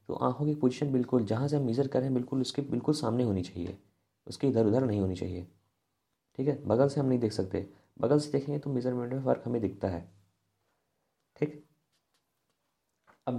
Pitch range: 110-150 Hz